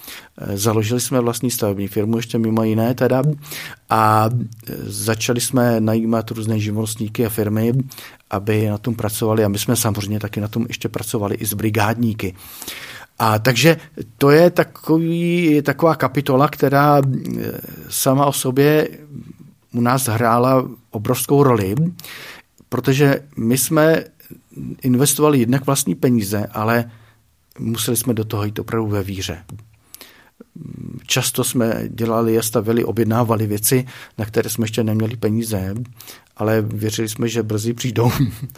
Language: Czech